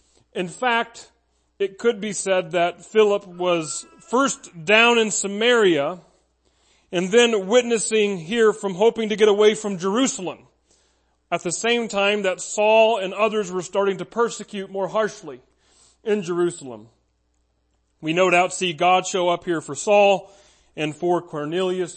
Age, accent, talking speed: 40-59, American, 145 wpm